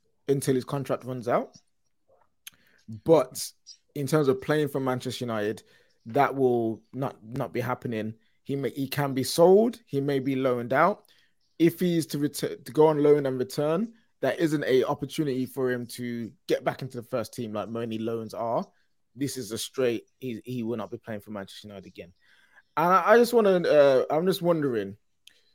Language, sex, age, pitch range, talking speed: English, male, 20-39, 115-145 Hz, 195 wpm